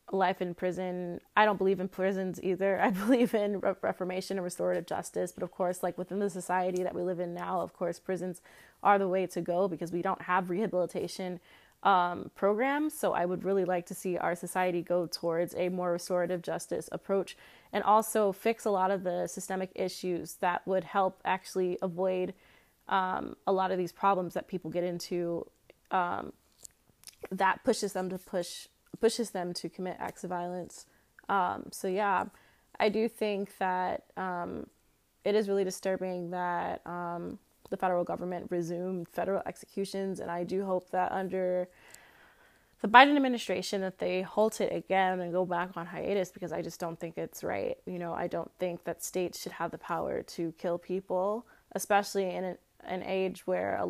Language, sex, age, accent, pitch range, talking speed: English, female, 20-39, American, 180-195 Hz, 180 wpm